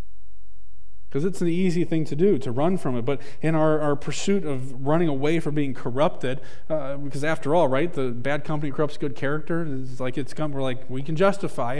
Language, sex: English, male